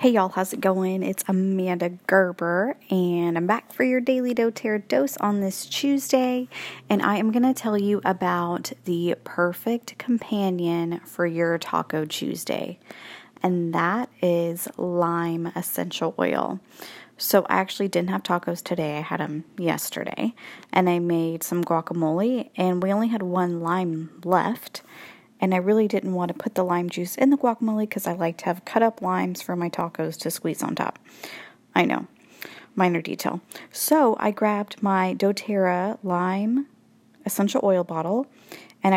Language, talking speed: English, 160 wpm